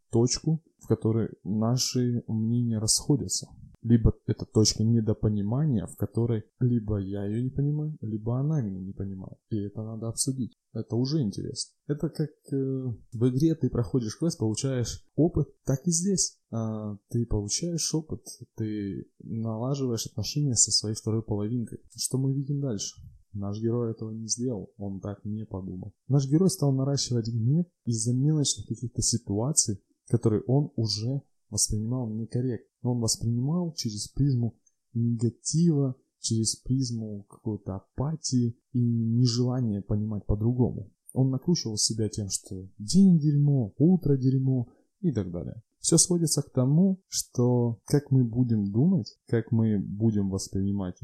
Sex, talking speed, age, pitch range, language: male, 140 wpm, 20-39, 110-135 Hz, Russian